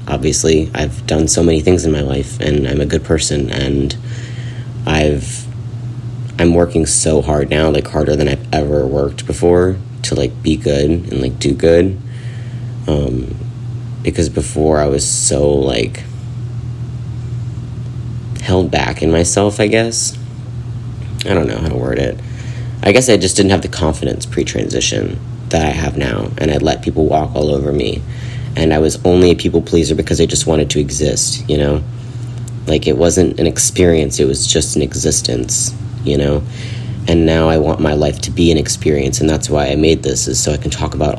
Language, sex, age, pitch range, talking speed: English, male, 30-49, 75-120 Hz, 185 wpm